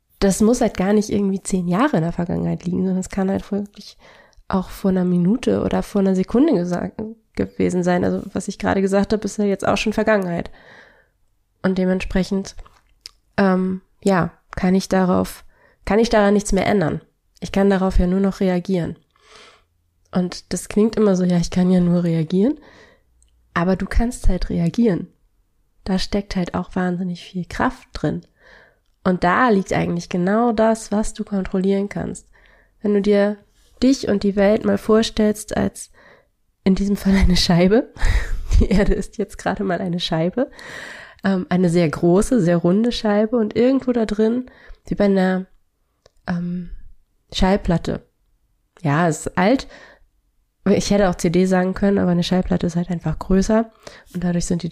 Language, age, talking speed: German, 20-39, 170 wpm